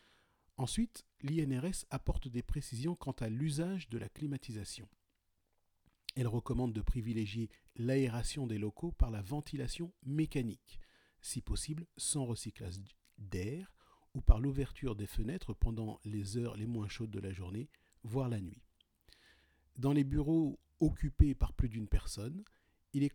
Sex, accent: male, French